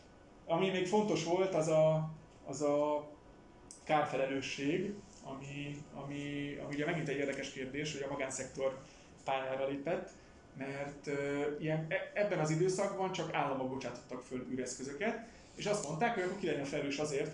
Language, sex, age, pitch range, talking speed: Hungarian, male, 20-39, 135-165 Hz, 145 wpm